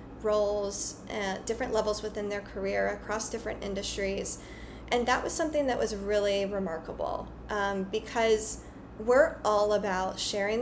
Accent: American